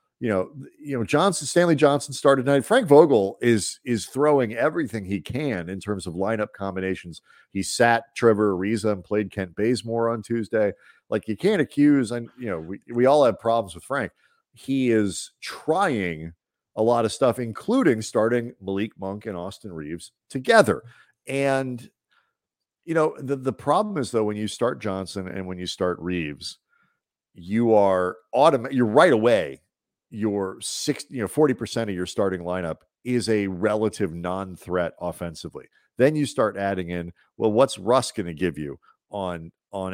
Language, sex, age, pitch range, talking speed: English, male, 40-59, 95-130 Hz, 170 wpm